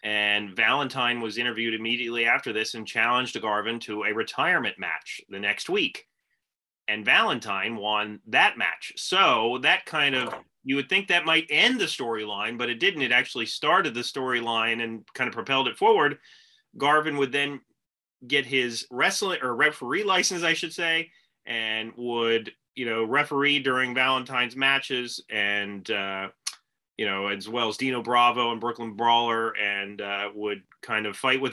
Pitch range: 115-135 Hz